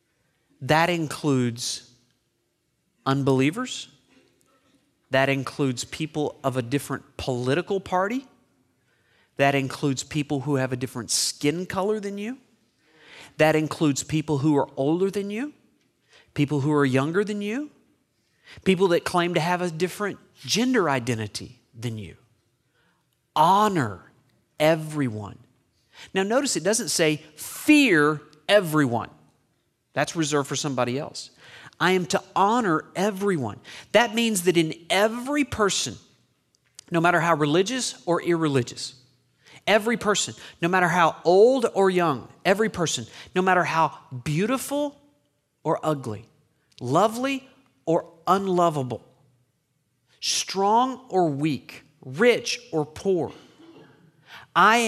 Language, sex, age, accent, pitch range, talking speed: English, male, 40-59, American, 130-195 Hz, 115 wpm